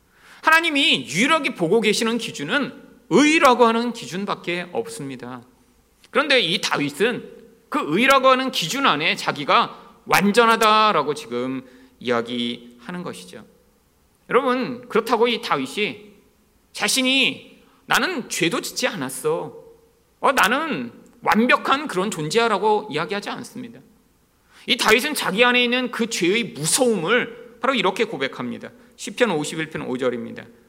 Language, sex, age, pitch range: Korean, male, 40-59, 165-245 Hz